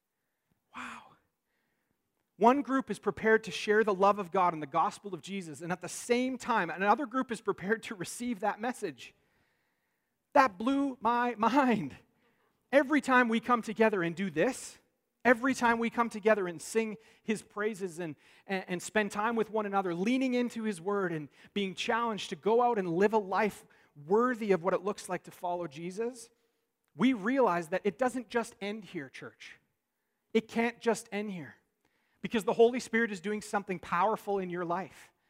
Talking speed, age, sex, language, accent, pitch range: 180 wpm, 40-59, male, English, American, 175-225 Hz